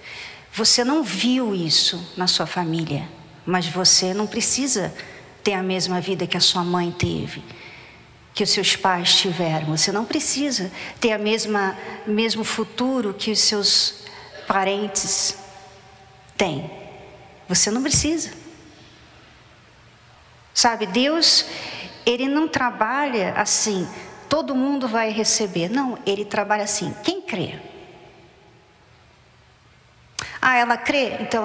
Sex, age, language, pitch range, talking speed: female, 50-69, Portuguese, 195-265 Hz, 115 wpm